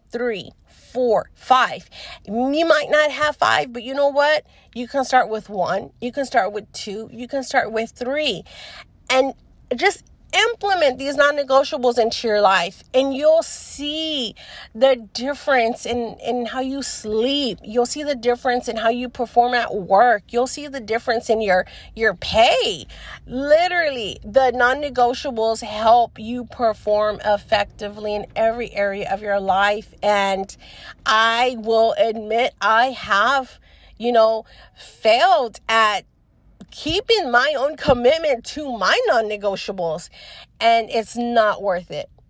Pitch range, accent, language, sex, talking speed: 215-280 Hz, American, English, female, 140 wpm